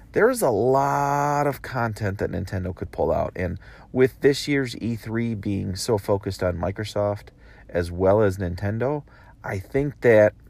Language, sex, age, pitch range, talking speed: English, male, 30-49, 105-140 Hz, 155 wpm